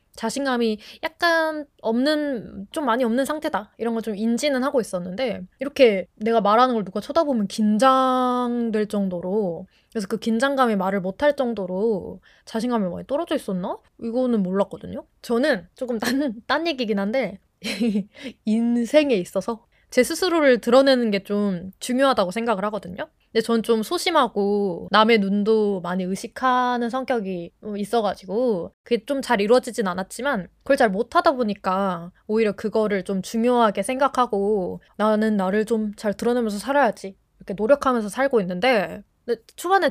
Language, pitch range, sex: Korean, 200-255 Hz, female